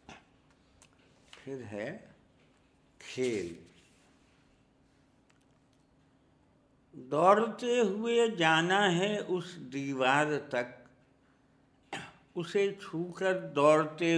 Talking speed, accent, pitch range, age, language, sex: 60 wpm, native, 110-145 Hz, 60-79, Hindi, male